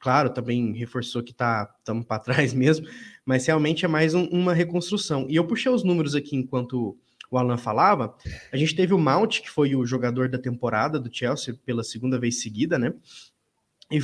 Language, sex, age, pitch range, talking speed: Portuguese, male, 20-39, 125-170 Hz, 190 wpm